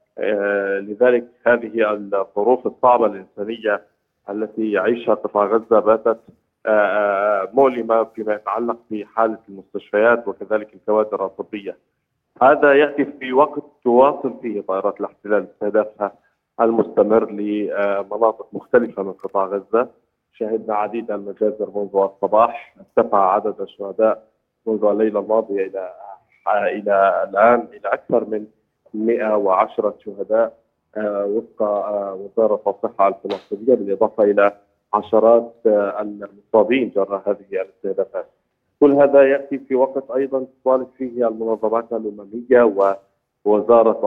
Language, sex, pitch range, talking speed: Arabic, male, 100-120 Hz, 100 wpm